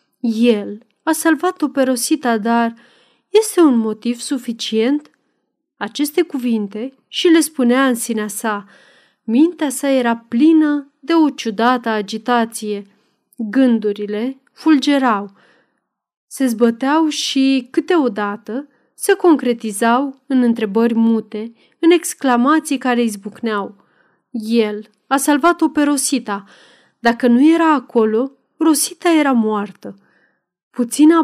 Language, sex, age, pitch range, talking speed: Romanian, female, 30-49, 220-275 Hz, 105 wpm